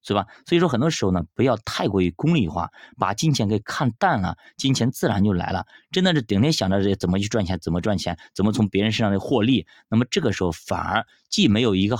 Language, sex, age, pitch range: Chinese, male, 20-39, 95-135 Hz